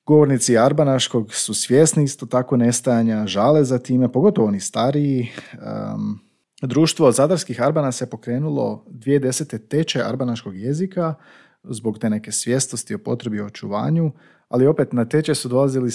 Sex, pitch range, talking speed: male, 115-155 Hz, 140 wpm